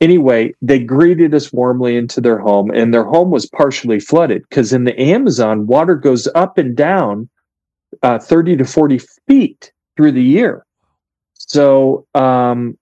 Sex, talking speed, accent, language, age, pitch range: male, 155 wpm, American, English, 40-59, 115-155 Hz